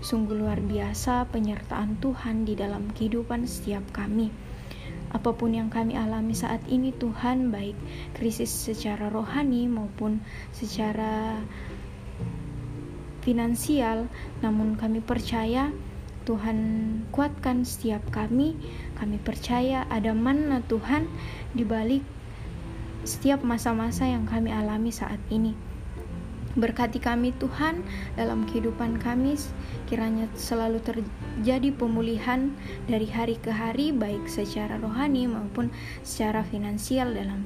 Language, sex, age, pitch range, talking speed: Indonesian, female, 20-39, 205-240 Hz, 105 wpm